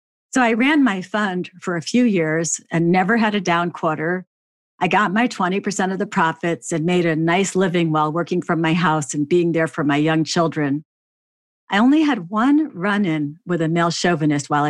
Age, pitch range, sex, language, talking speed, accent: 50-69, 160-220 Hz, female, English, 200 wpm, American